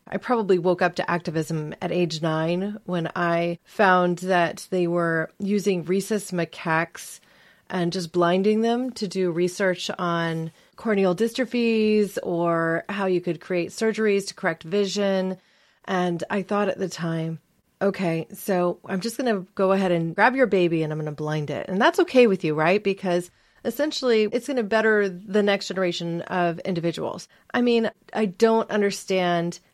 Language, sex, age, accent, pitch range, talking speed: English, female, 30-49, American, 170-205 Hz, 170 wpm